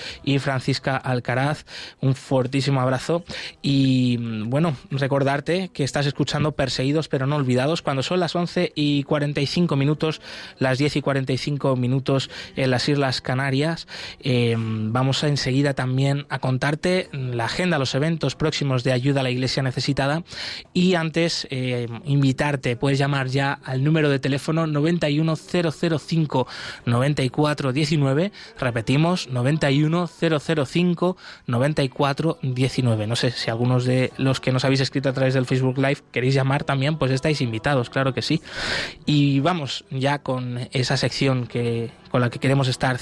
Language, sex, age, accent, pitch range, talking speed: Spanish, male, 20-39, Spanish, 130-150 Hz, 135 wpm